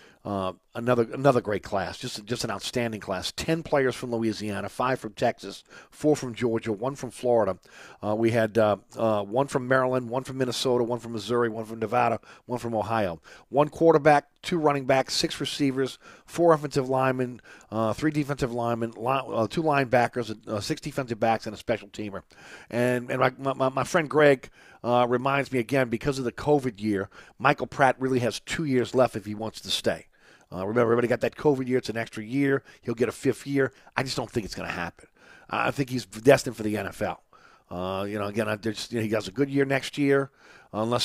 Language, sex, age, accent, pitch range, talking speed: English, male, 40-59, American, 110-140 Hz, 205 wpm